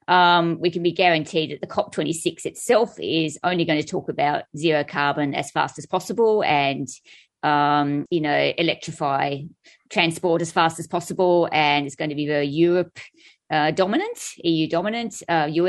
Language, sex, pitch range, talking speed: English, female, 150-185 Hz, 165 wpm